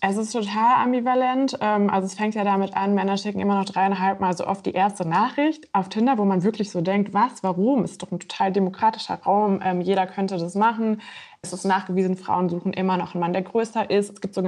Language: German